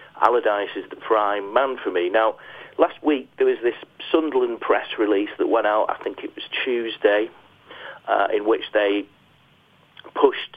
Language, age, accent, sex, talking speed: English, 40-59, British, male, 165 wpm